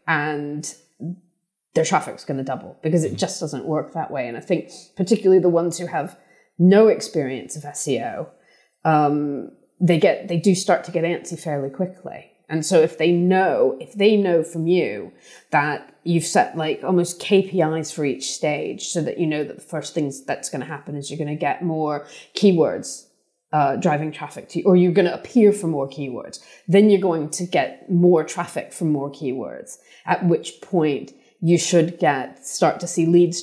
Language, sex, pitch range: English, female, 155-180 Hz